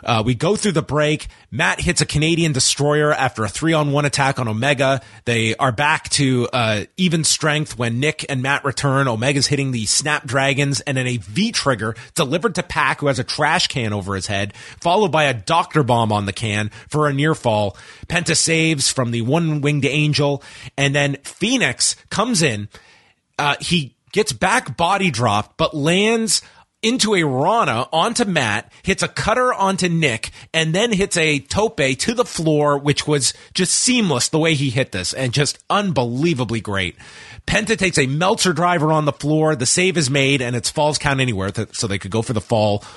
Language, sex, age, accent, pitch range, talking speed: English, male, 30-49, American, 125-170 Hz, 190 wpm